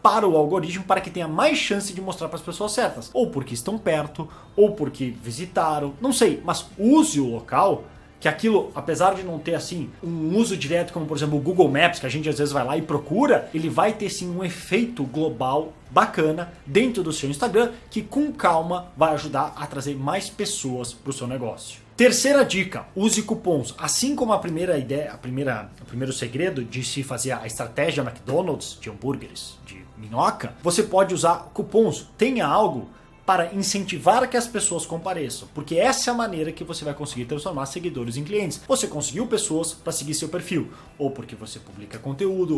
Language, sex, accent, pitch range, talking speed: Portuguese, male, Brazilian, 140-205 Hz, 195 wpm